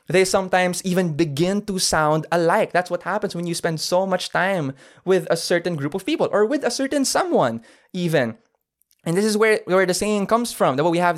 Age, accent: 20-39, Filipino